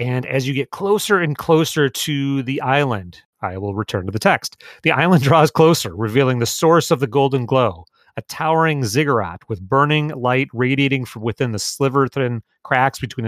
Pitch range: 115-145 Hz